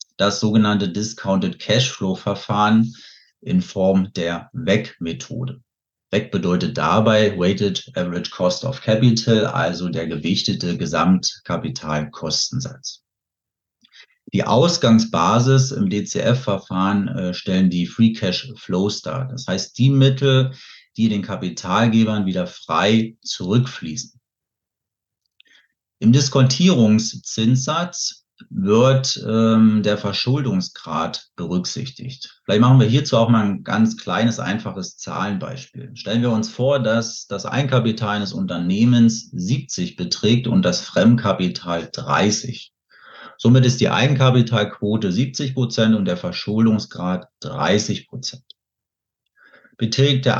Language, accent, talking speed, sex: German, German, 105 wpm, male